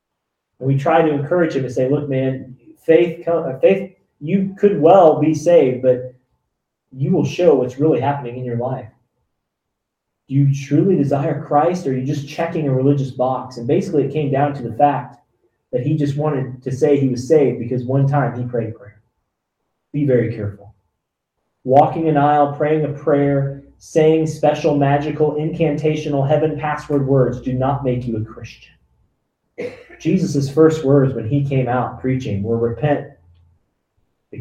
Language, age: English, 30-49